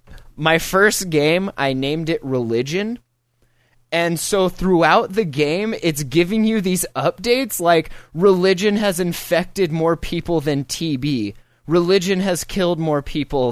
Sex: male